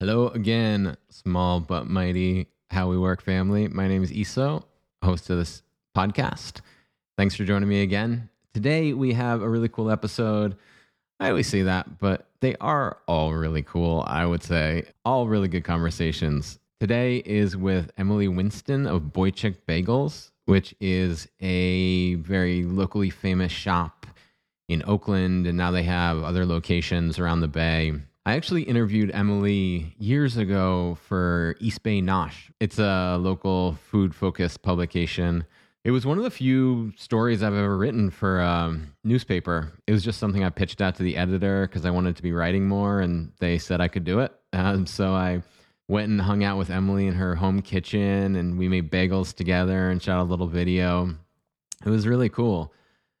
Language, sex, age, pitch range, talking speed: English, male, 20-39, 90-105 Hz, 170 wpm